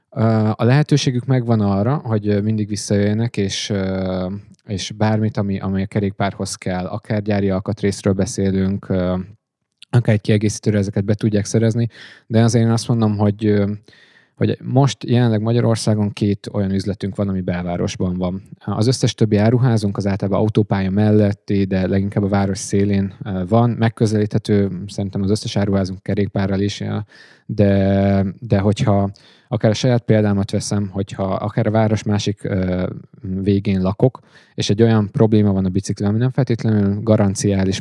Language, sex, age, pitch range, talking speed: Hungarian, male, 20-39, 100-110 Hz, 140 wpm